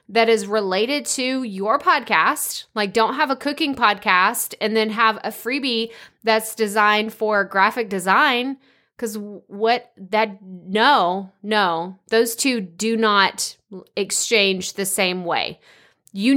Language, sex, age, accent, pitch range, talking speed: English, female, 20-39, American, 195-235 Hz, 130 wpm